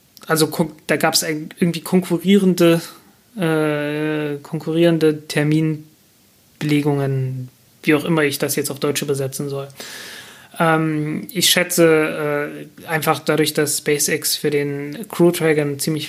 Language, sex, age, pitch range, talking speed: German, male, 30-49, 145-165 Hz, 115 wpm